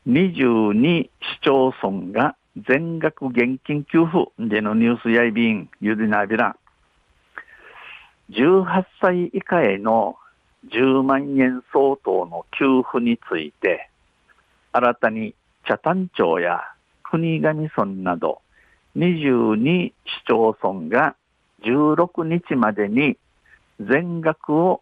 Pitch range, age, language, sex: 110-155 Hz, 60-79, Japanese, male